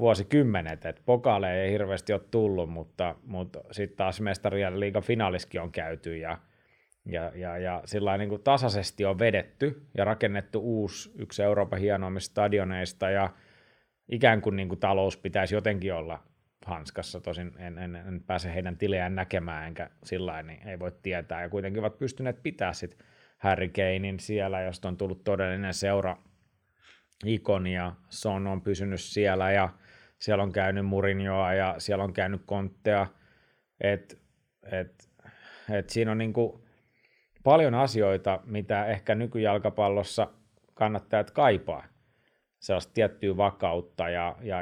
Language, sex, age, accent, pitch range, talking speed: Finnish, male, 30-49, native, 95-110 Hz, 145 wpm